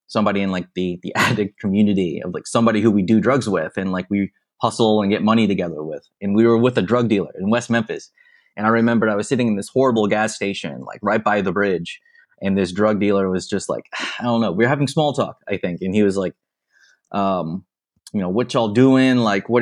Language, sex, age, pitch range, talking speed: English, male, 20-39, 100-120 Hz, 240 wpm